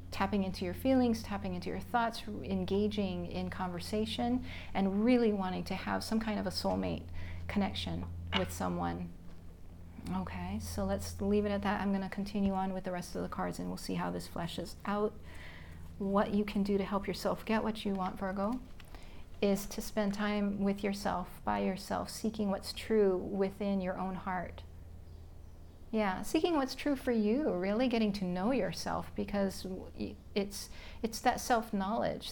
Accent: American